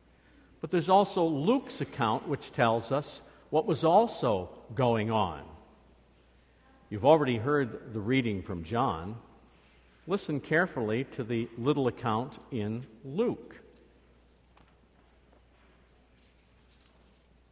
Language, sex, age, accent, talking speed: English, male, 50-69, American, 95 wpm